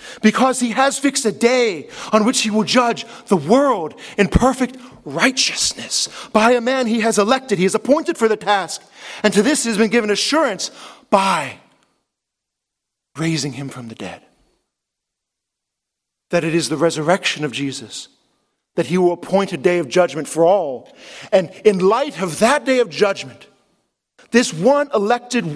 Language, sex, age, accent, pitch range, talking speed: English, male, 40-59, American, 145-235 Hz, 165 wpm